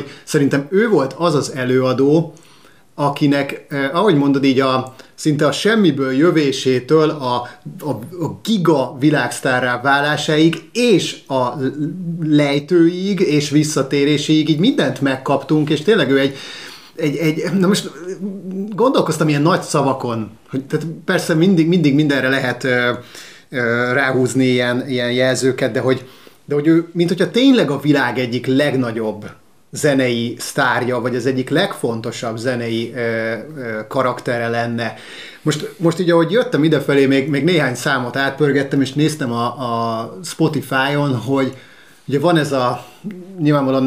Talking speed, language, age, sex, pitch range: 140 wpm, Hungarian, 30-49, male, 125-155 Hz